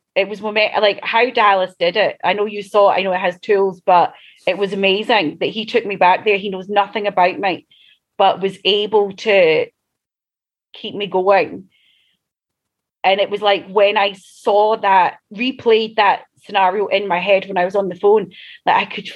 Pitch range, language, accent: 185-220 Hz, English, British